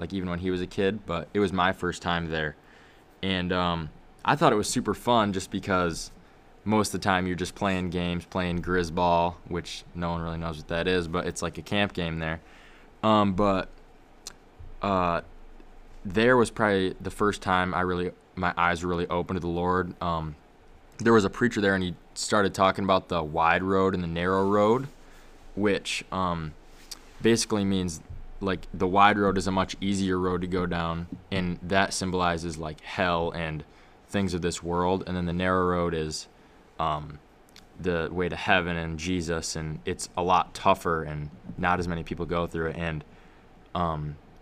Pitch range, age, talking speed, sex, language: 85-100 Hz, 20-39, 190 wpm, male, English